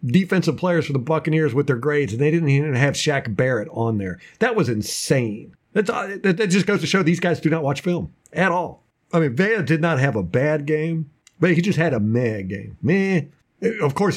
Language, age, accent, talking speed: English, 50-69, American, 225 wpm